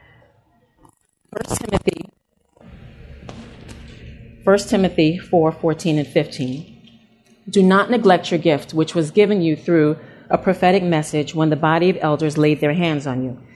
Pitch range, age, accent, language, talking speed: 145-195 Hz, 40-59, American, English, 130 wpm